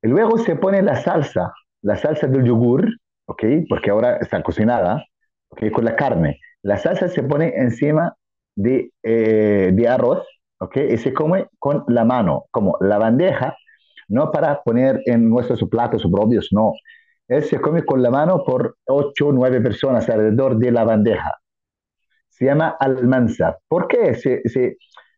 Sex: male